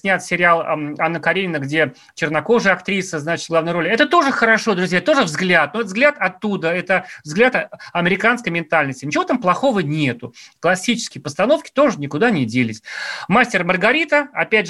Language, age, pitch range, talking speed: Russian, 30-49, 155-210 Hz, 145 wpm